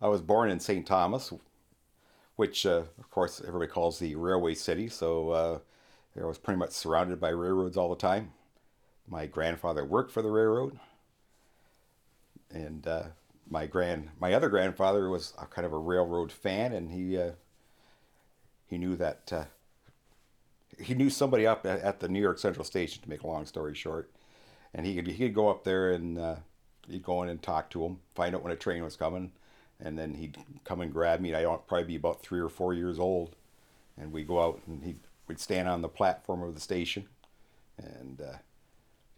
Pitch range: 80-95 Hz